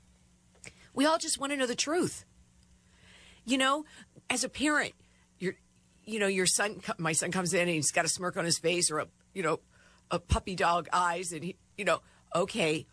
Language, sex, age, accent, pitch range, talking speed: English, female, 50-69, American, 155-220 Hz, 200 wpm